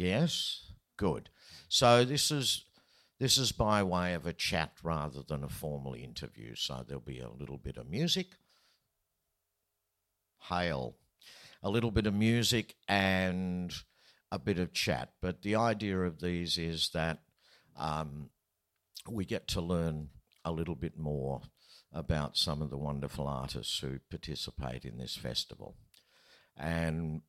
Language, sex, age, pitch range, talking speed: English, male, 60-79, 70-90 Hz, 140 wpm